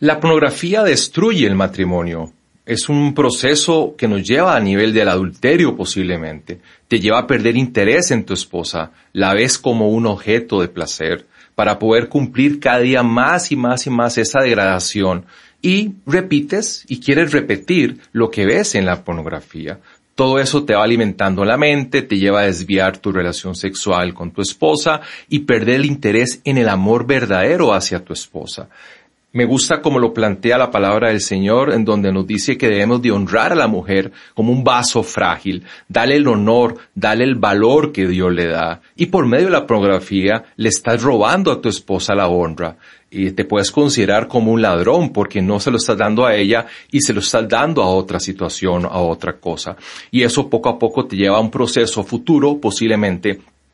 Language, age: English, 40-59